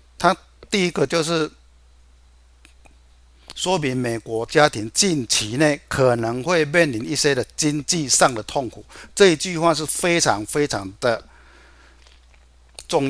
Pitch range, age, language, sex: 95-150 Hz, 60-79, Chinese, male